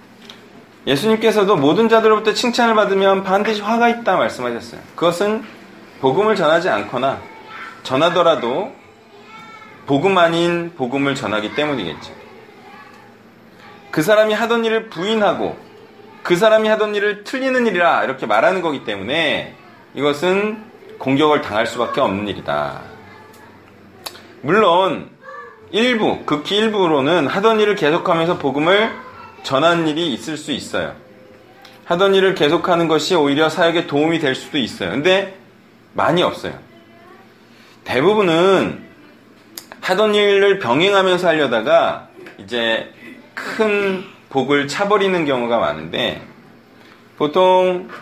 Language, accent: Korean, native